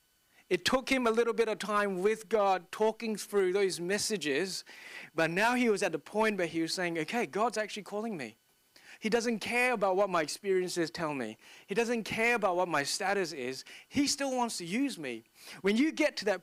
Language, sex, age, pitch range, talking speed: English, male, 30-49, 165-215 Hz, 210 wpm